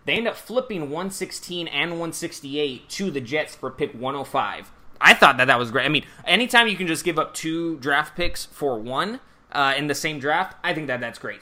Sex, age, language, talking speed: male, 20-39, English, 220 wpm